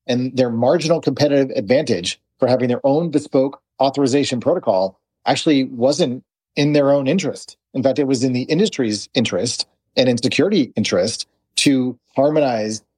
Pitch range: 120-145 Hz